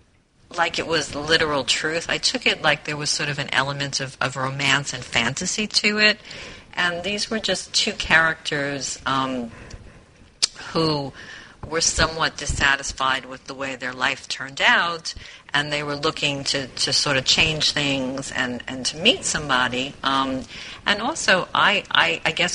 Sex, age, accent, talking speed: female, 50-69, American, 165 wpm